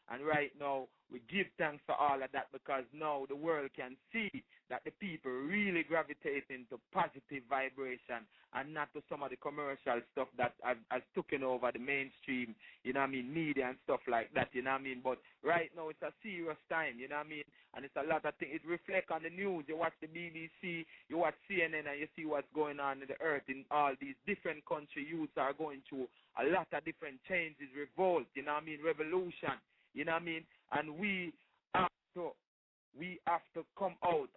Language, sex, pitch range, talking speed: English, male, 135-160 Hz, 225 wpm